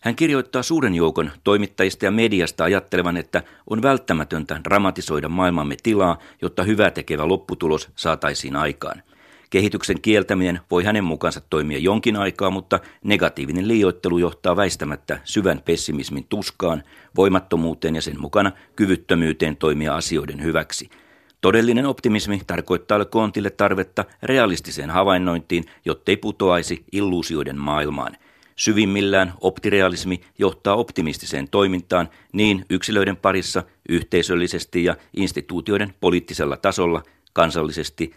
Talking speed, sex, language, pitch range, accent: 110 wpm, male, Finnish, 85-105 Hz, native